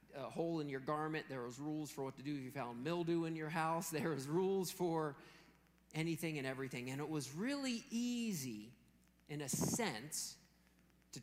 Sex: male